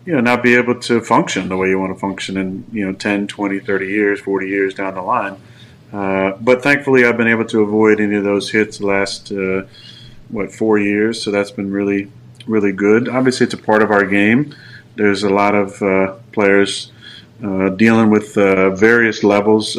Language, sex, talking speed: English, male, 205 wpm